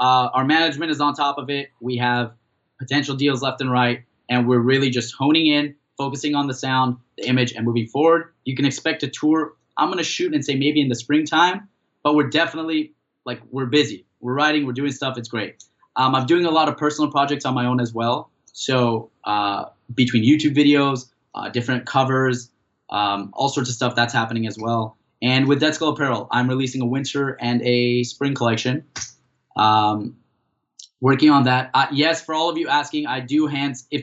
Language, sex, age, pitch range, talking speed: English, male, 20-39, 120-145 Hz, 205 wpm